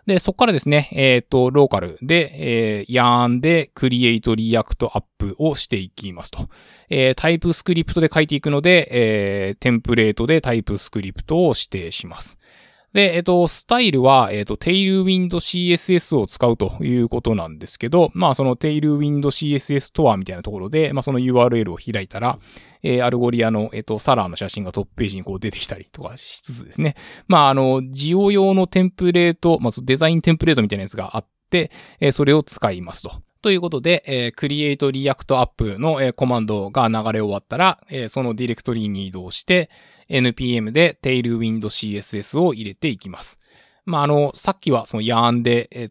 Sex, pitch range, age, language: male, 105-150 Hz, 20-39, Japanese